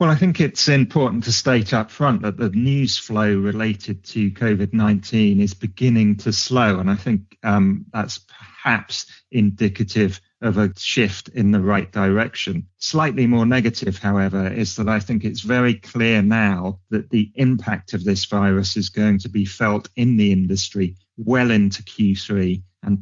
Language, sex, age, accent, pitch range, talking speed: English, male, 30-49, British, 100-120 Hz, 165 wpm